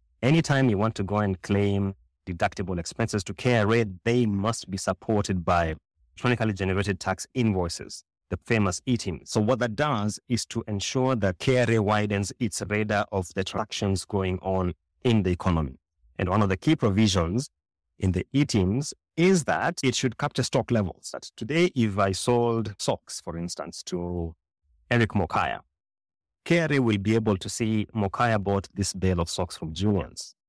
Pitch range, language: 95-115 Hz, English